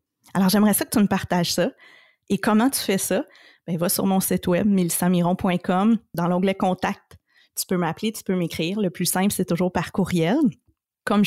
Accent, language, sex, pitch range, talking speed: Canadian, French, female, 175-245 Hz, 210 wpm